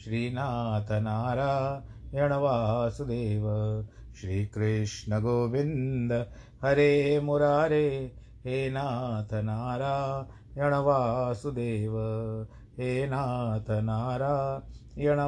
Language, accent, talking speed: Hindi, native, 50 wpm